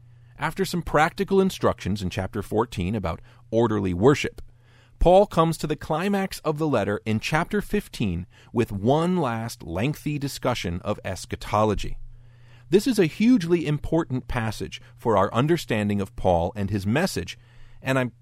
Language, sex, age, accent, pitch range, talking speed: English, male, 40-59, American, 100-150 Hz, 145 wpm